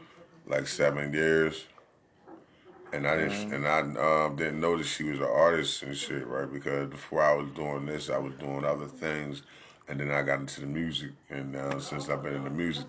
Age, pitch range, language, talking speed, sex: 30-49, 75-85 Hz, English, 210 wpm, male